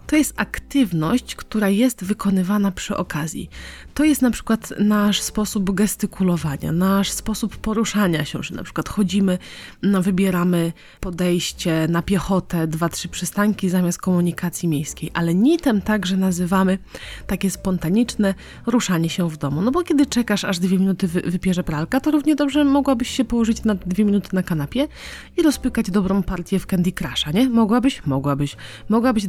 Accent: native